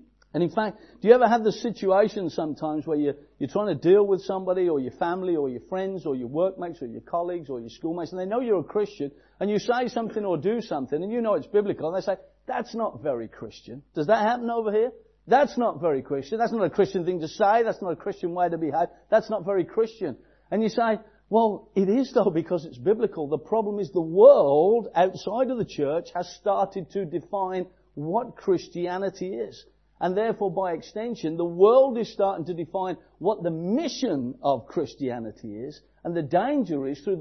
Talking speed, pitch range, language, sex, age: 215 wpm, 170-215 Hz, English, male, 50-69